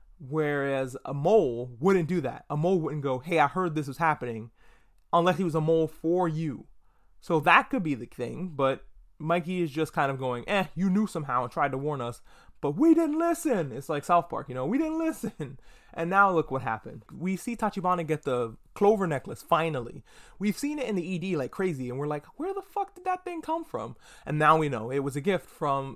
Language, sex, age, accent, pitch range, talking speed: English, male, 20-39, American, 140-190 Hz, 230 wpm